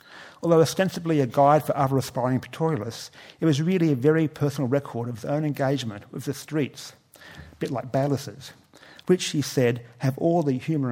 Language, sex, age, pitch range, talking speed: English, male, 50-69, 120-145 Hz, 180 wpm